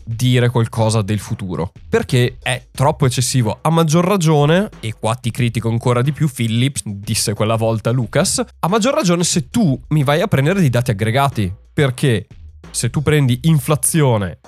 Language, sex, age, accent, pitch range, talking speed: Italian, male, 20-39, native, 120-165 Hz, 165 wpm